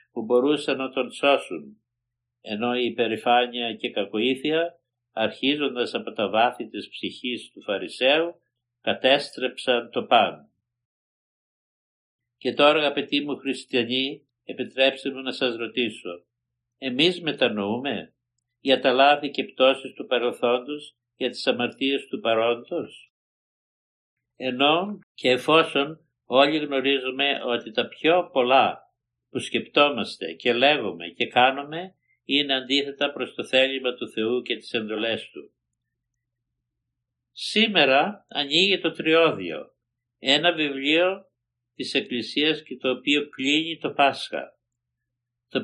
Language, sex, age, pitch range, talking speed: Greek, male, 60-79, 120-145 Hz, 115 wpm